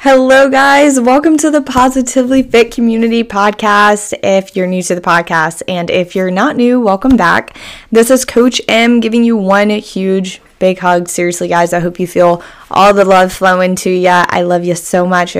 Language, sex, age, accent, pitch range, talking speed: English, female, 20-39, American, 175-220 Hz, 195 wpm